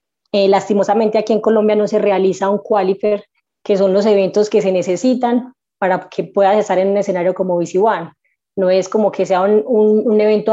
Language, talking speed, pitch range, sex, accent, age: Spanish, 205 wpm, 195-215 Hz, female, Colombian, 20-39